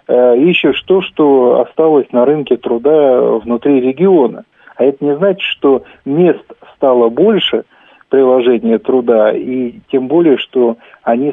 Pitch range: 120-145 Hz